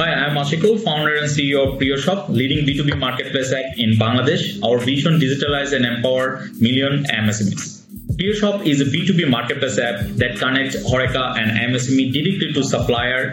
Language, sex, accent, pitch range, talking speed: English, male, Indian, 120-150 Hz, 160 wpm